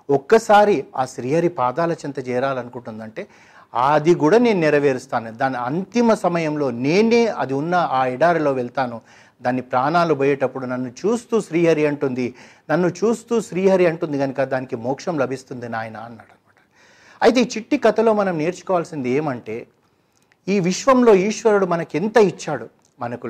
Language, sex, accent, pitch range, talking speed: Telugu, male, native, 135-180 Hz, 130 wpm